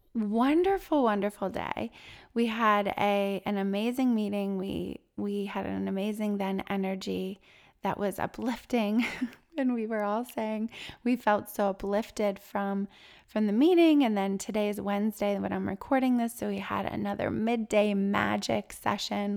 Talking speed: 150 wpm